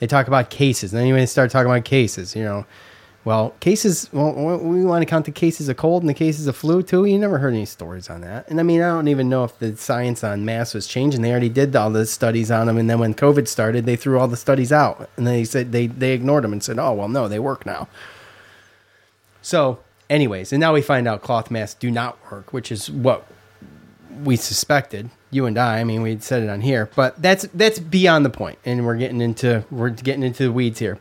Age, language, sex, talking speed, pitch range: 30-49, English, male, 250 wpm, 110-135 Hz